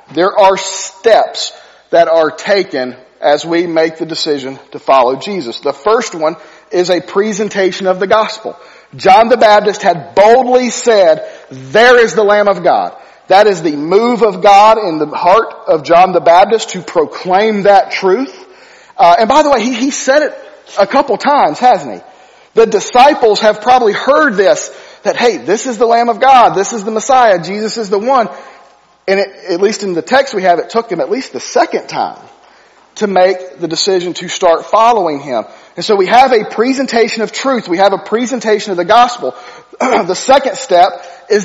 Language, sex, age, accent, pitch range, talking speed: English, male, 40-59, American, 180-235 Hz, 190 wpm